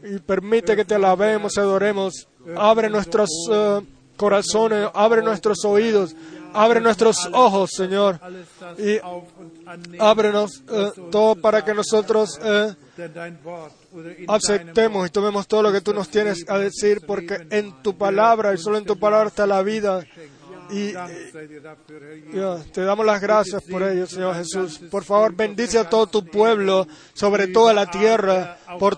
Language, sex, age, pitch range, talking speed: Spanish, male, 20-39, 175-215 Hz, 145 wpm